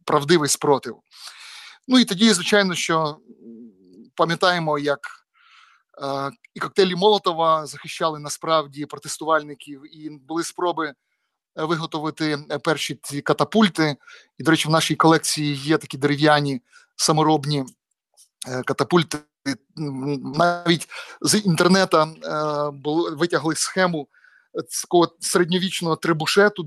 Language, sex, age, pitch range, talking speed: Ukrainian, male, 30-49, 150-180 Hz, 95 wpm